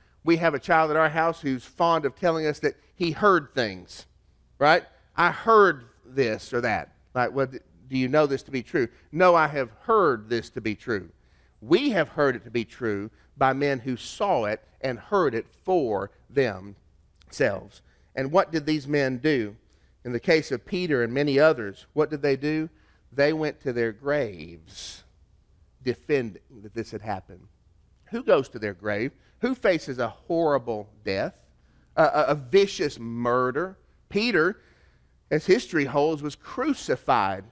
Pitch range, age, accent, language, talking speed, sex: 110-185 Hz, 40-59, American, English, 170 wpm, male